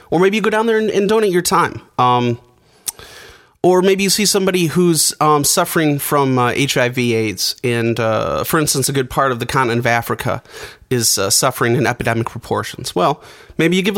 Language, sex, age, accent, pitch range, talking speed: English, male, 30-49, American, 125-185 Hz, 195 wpm